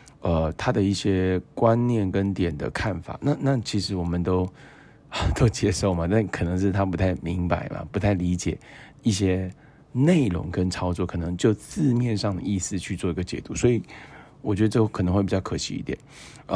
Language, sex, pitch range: Chinese, male, 90-125 Hz